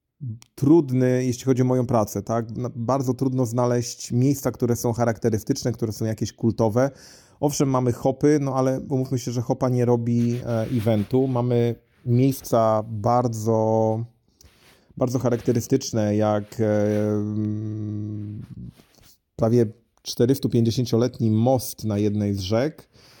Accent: native